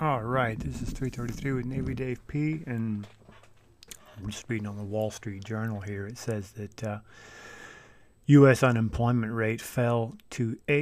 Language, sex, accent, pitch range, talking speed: English, male, American, 105-130 Hz, 155 wpm